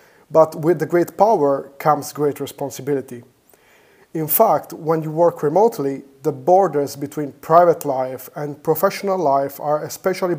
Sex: male